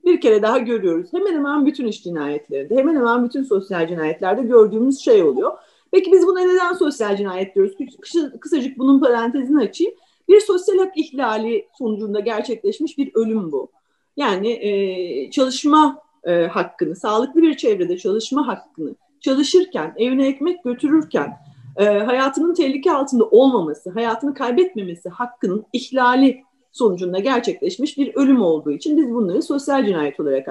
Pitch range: 215-350 Hz